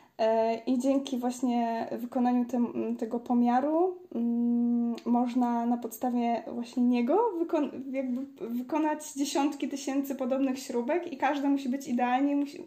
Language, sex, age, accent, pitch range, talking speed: Polish, female, 20-39, native, 240-275 Hz, 120 wpm